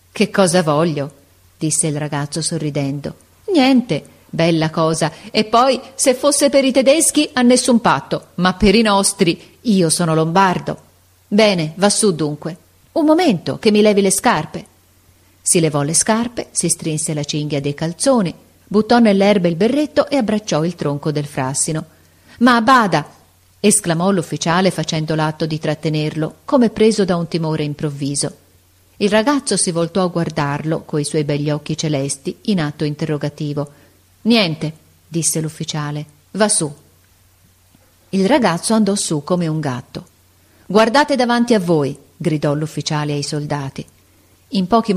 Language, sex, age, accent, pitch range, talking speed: Italian, female, 40-59, native, 150-210 Hz, 145 wpm